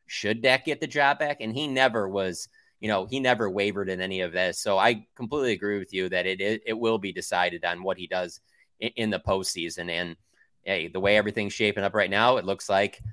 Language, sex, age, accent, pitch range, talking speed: English, male, 20-39, American, 95-110 Hz, 240 wpm